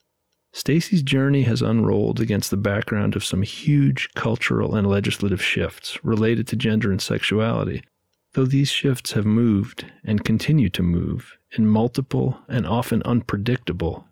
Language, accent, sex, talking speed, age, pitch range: English, American, male, 140 wpm, 40-59, 105-130 Hz